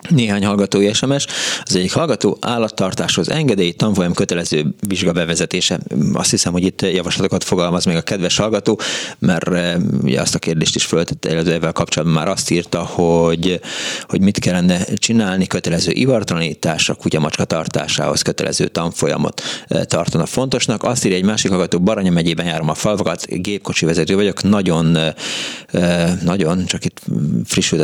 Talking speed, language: 145 wpm, Hungarian